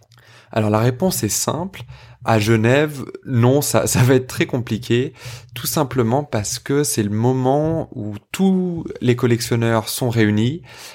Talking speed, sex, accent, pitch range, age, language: 150 wpm, male, French, 105-125 Hz, 20-39, French